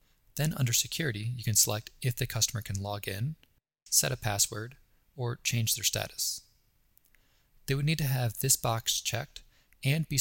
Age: 20-39